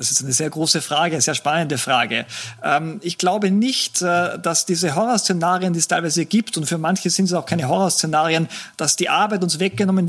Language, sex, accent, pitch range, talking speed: German, male, German, 165-205 Hz, 195 wpm